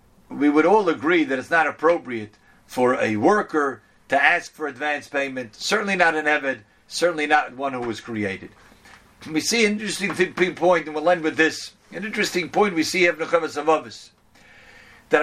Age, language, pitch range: 50-69, English, 140-180 Hz